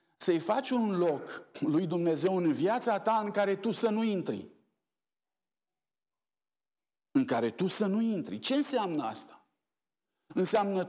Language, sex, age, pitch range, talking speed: Romanian, male, 50-69, 145-220 Hz, 140 wpm